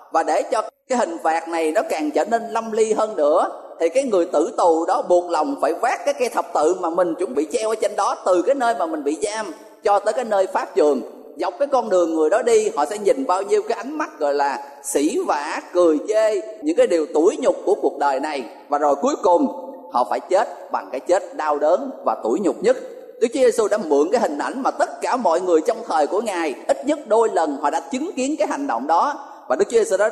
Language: Thai